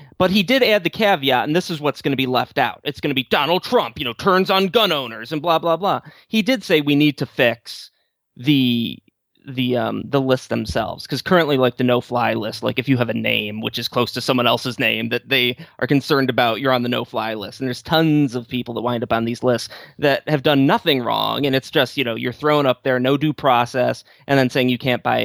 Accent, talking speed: American, 260 wpm